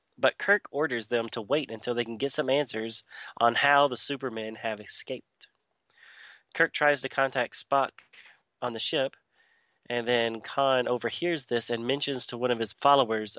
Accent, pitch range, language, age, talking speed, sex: American, 115-135 Hz, English, 30-49, 170 wpm, male